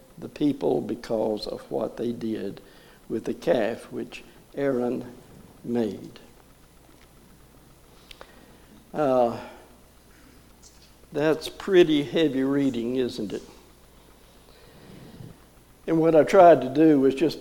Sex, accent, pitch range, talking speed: male, American, 135-175 Hz, 95 wpm